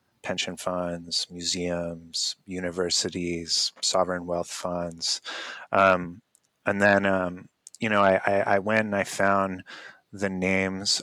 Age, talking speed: 30-49, 120 wpm